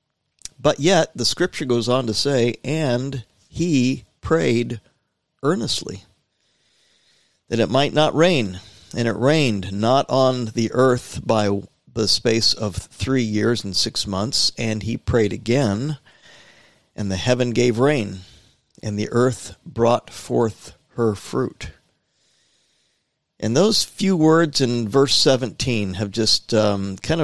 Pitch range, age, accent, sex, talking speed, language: 105-130 Hz, 50-69, American, male, 130 wpm, English